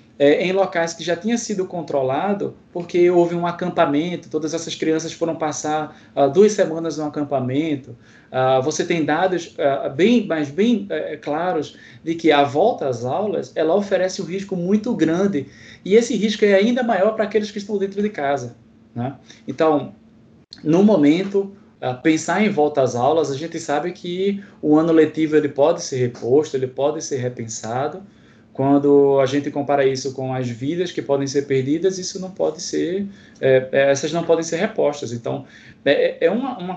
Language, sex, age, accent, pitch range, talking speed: Portuguese, male, 20-39, Brazilian, 135-180 Hz, 180 wpm